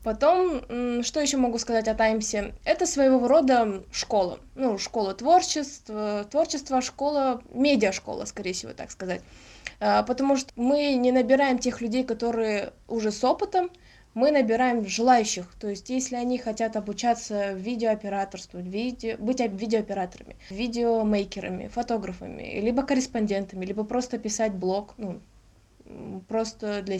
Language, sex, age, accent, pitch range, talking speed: Russian, female, 20-39, native, 205-255 Hz, 120 wpm